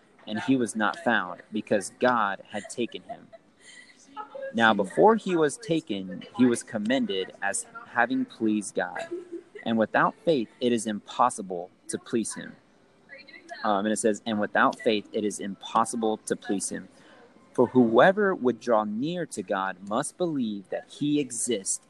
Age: 30-49